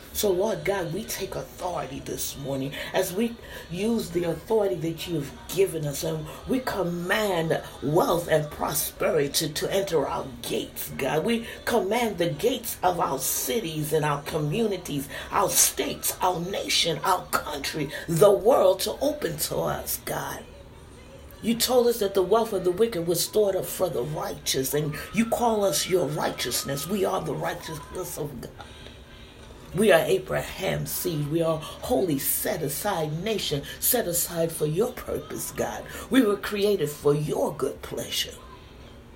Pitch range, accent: 150-210 Hz, American